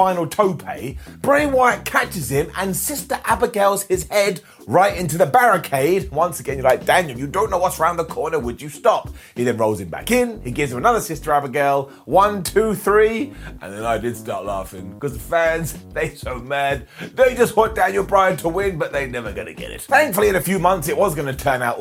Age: 30-49